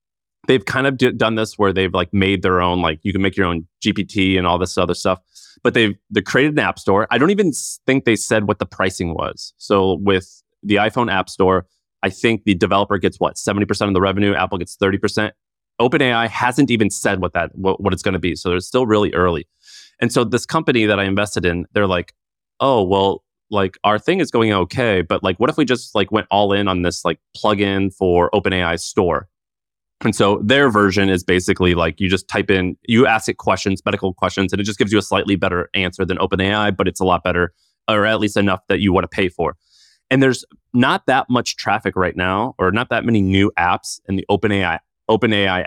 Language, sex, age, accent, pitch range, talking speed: English, male, 30-49, American, 95-105 Hz, 225 wpm